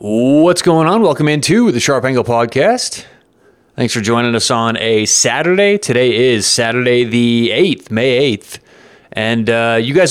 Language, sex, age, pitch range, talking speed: English, male, 30-49, 115-140 Hz, 160 wpm